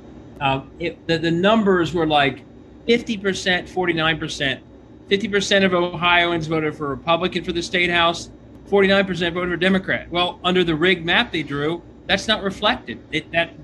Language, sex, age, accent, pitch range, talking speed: English, male, 40-59, American, 155-190 Hz, 155 wpm